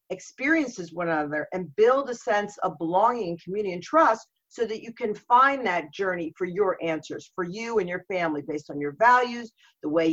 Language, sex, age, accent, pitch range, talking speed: English, female, 50-69, American, 170-250 Hz, 195 wpm